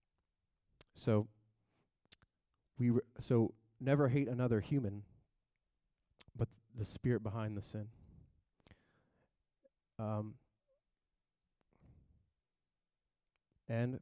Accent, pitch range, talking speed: American, 105-120 Hz, 75 wpm